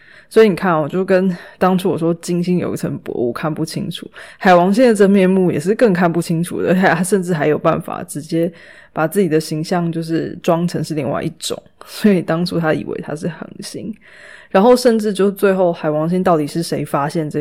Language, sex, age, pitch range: Chinese, female, 20-39, 160-190 Hz